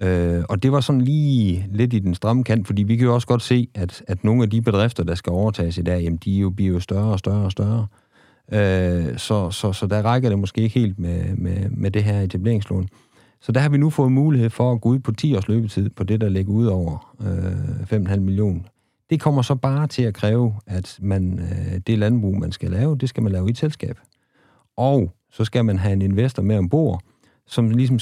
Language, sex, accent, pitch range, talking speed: Danish, male, native, 95-120 Hz, 235 wpm